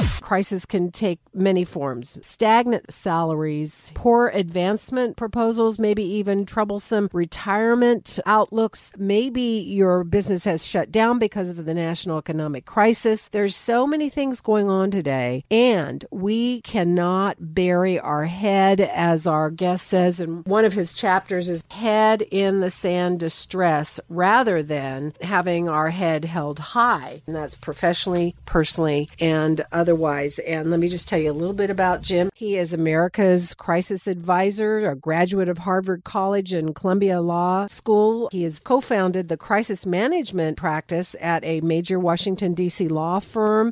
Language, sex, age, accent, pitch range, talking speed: English, female, 50-69, American, 165-210 Hz, 150 wpm